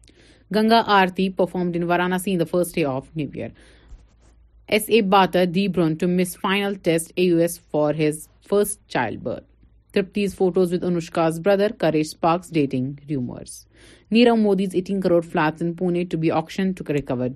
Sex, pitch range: female, 160-210 Hz